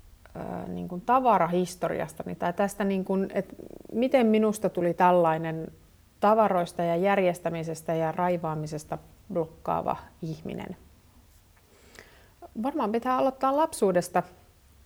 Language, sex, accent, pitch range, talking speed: Finnish, female, native, 165-205 Hz, 95 wpm